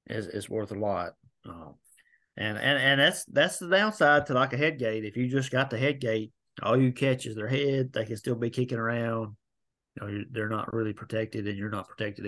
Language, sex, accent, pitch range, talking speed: English, male, American, 110-125 Hz, 230 wpm